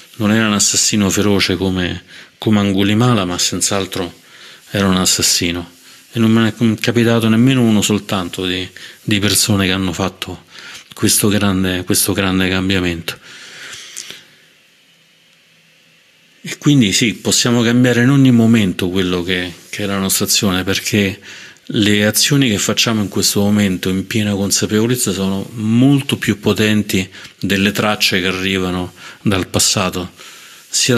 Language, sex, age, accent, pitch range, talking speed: Italian, male, 40-59, native, 95-110 Hz, 130 wpm